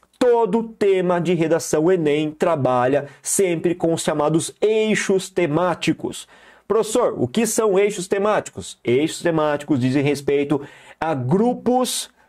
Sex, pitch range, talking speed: male, 135-195 Hz, 120 wpm